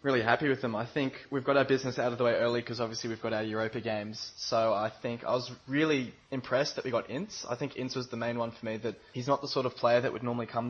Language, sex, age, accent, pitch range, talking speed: English, male, 10-29, Australian, 110-125 Hz, 295 wpm